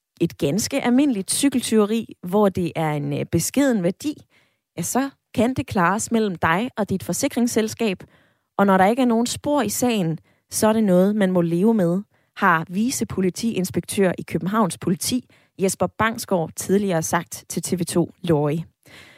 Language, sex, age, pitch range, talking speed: Danish, female, 20-39, 175-230 Hz, 155 wpm